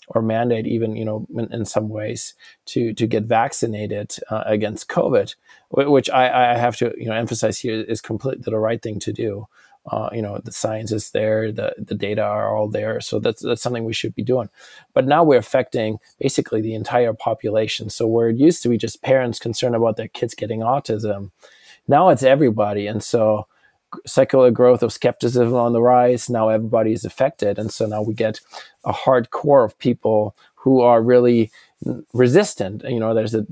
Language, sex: English, male